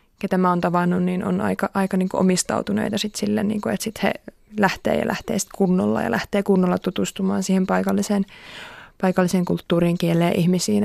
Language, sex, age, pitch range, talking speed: Finnish, female, 20-39, 180-210 Hz, 165 wpm